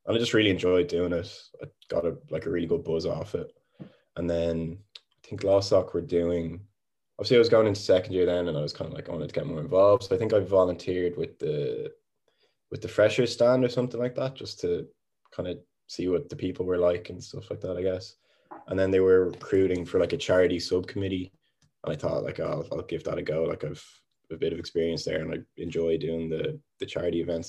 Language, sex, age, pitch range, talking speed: English, male, 20-39, 85-105 Hz, 240 wpm